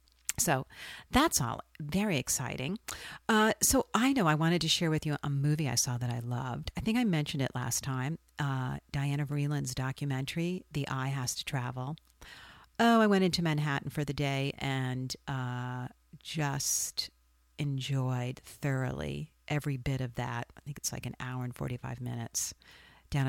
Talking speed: 165 wpm